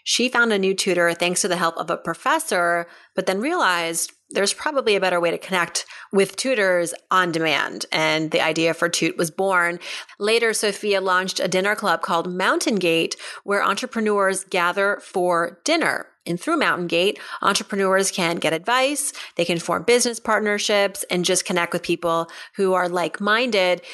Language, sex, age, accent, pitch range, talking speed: English, female, 30-49, American, 180-225 Hz, 170 wpm